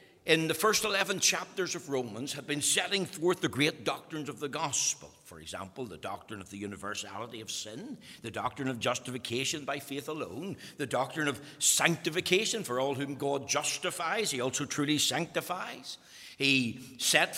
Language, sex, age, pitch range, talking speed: English, male, 60-79, 145-205 Hz, 165 wpm